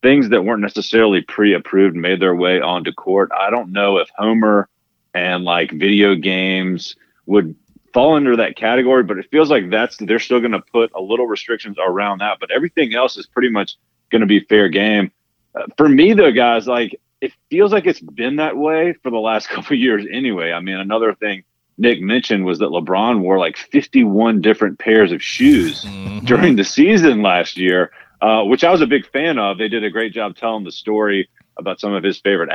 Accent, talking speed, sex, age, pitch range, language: American, 205 wpm, male, 40-59, 95-115 Hz, English